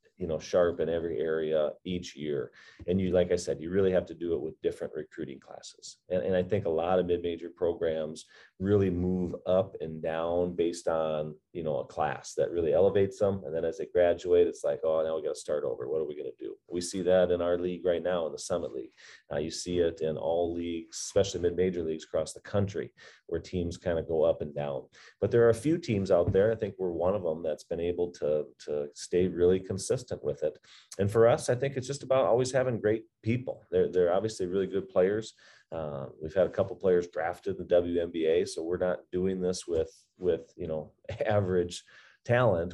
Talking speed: 230 wpm